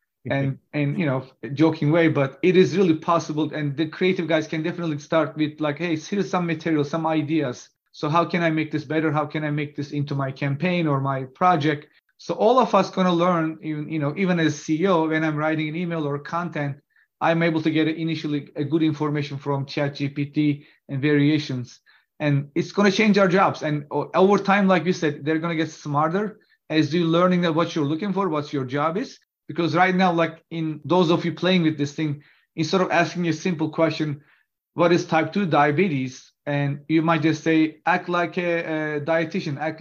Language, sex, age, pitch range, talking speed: English, male, 30-49, 150-170 Hz, 210 wpm